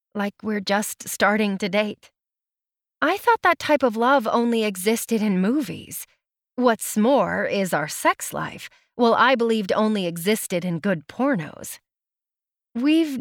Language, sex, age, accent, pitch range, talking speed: English, female, 30-49, American, 200-260 Hz, 140 wpm